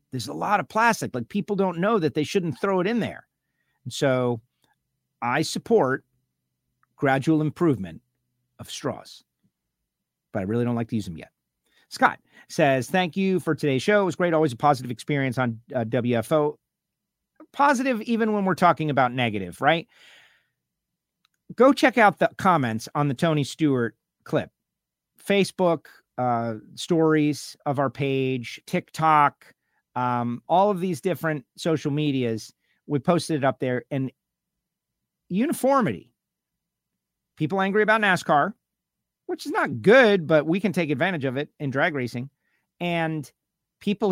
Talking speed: 145 wpm